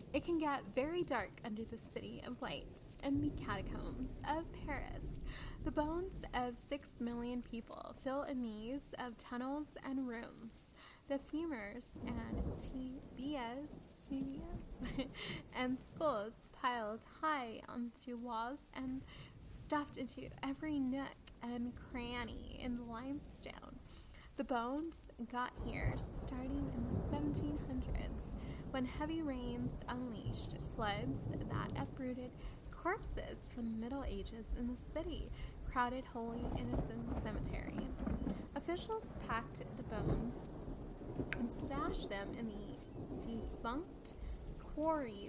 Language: English